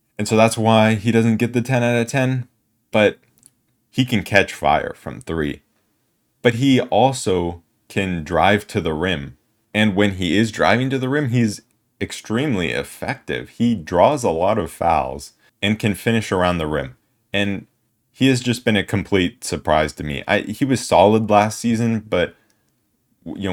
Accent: American